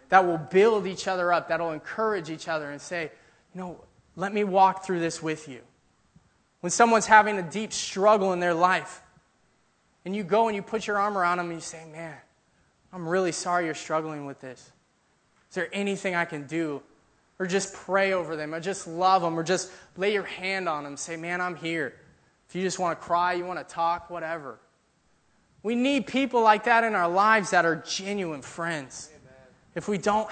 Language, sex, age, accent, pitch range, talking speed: English, male, 20-39, American, 155-195 Hz, 205 wpm